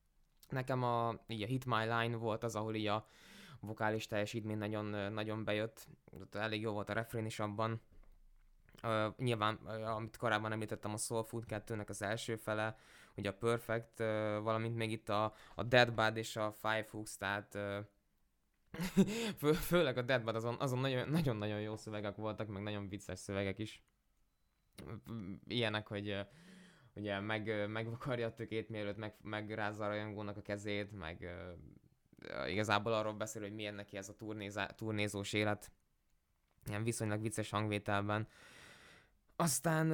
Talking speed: 145 wpm